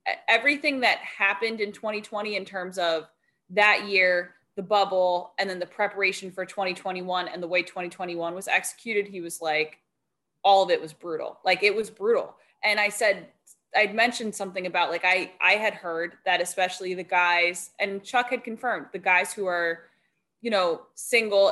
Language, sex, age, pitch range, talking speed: English, female, 20-39, 175-210 Hz, 175 wpm